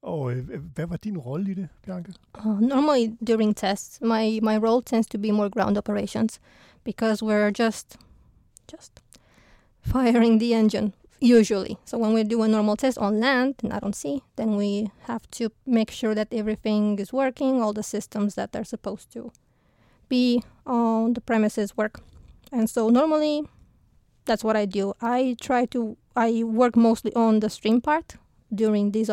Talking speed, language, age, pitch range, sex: 170 wpm, Danish, 20-39, 215-245 Hz, female